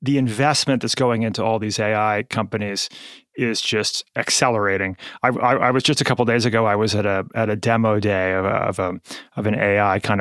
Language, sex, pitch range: English, male, 110-135 Hz